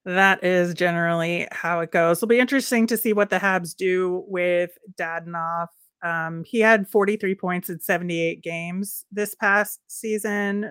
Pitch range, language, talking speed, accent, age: 175-210 Hz, English, 155 wpm, American, 30-49